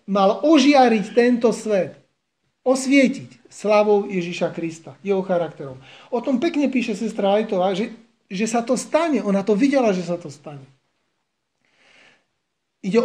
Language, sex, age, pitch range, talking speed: Slovak, male, 40-59, 190-235 Hz, 135 wpm